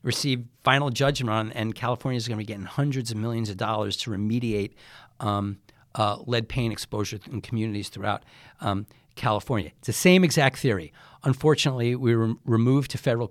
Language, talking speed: English, 175 wpm